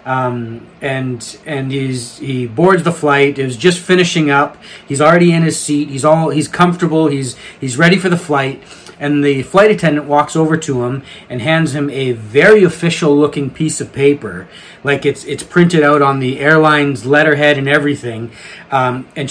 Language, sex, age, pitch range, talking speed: English, male, 30-49, 130-160 Hz, 185 wpm